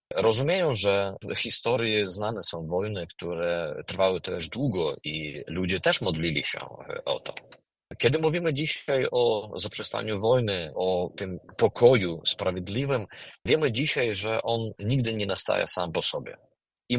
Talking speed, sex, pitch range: 140 wpm, male, 95-130 Hz